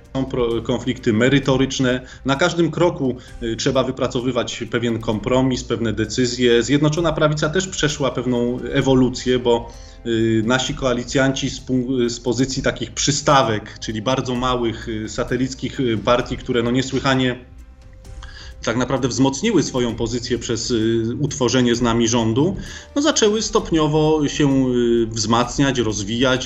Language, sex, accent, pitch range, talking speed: Polish, male, native, 115-140 Hz, 110 wpm